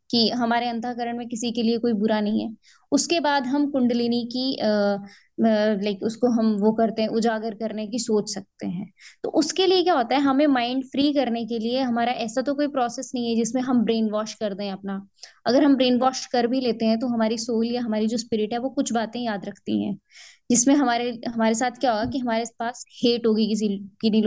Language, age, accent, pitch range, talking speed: English, 20-39, Indian, 220-260 Hz, 185 wpm